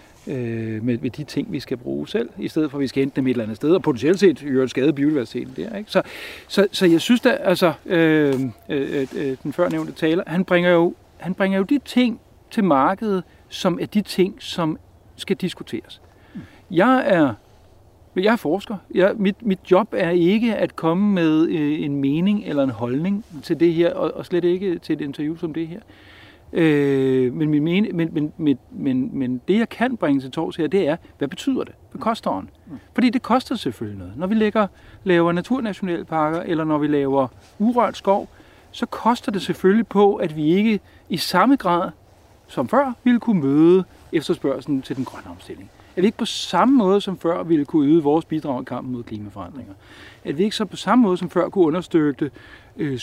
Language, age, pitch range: Danish, 60-79, 145-205 Hz